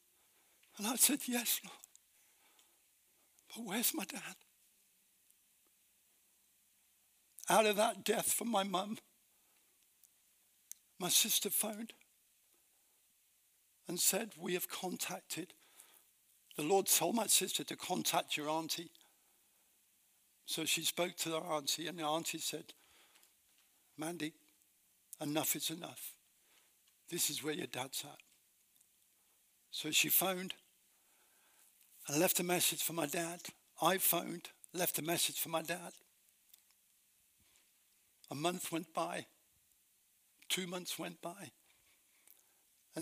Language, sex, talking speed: English, male, 110 wpm